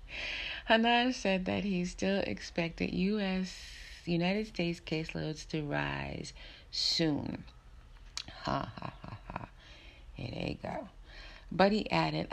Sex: female